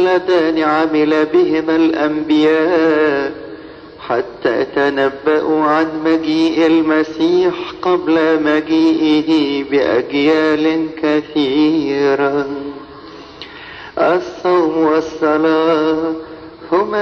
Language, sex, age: English, male, 50-69